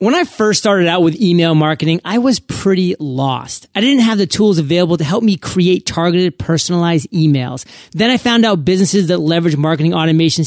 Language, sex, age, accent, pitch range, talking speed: English, male, 30-49, American, 160-195 Hz, 195 wpm